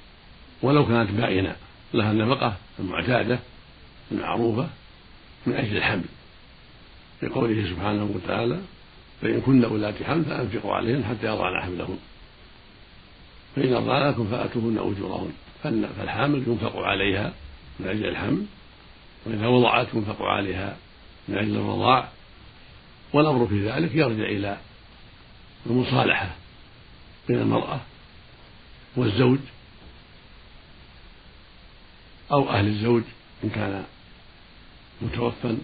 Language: Arabic